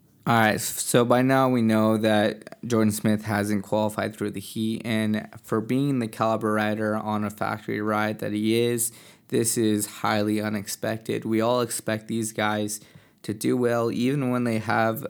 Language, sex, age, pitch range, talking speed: English, male, 20-39, 105-115 Hz, 175 wpm